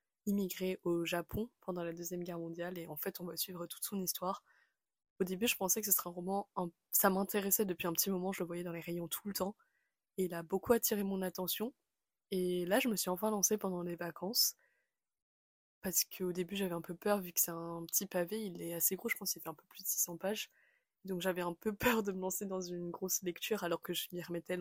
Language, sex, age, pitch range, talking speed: French, female, 20-39, 175-200 Hz, 250 wpm